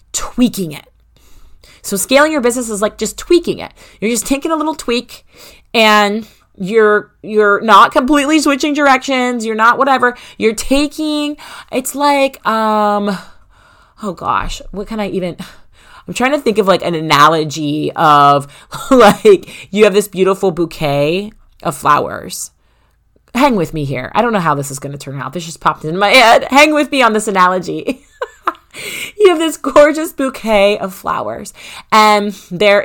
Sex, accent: female, American